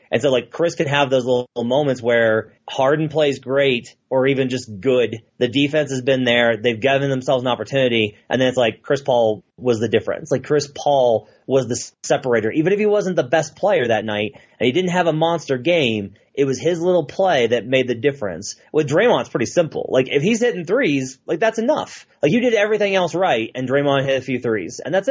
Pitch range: 125-155 Hz